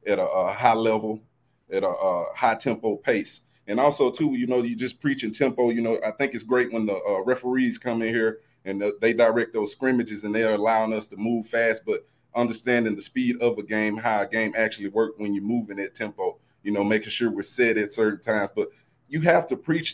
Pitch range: 110-130 Hz